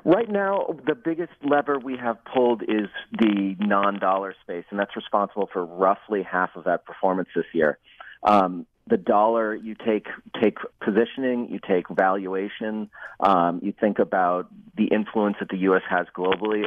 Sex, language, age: male, English, 40-59